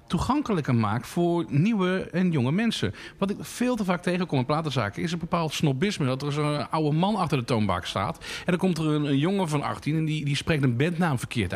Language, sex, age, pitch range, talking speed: Dutch, male, 50-69, 130-180 Hz, 230 wpm